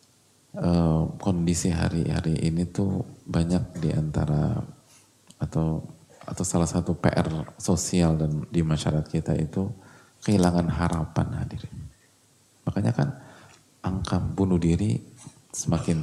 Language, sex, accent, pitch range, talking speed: English, male, Indonesian, 90-120 Hz, 100 wpm